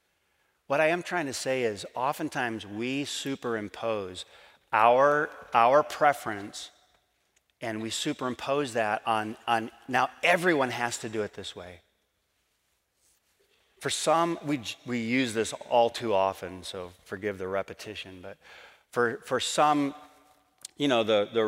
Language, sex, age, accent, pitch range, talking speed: English, male, 40-59, American, 105-145 Hz, 135 wpm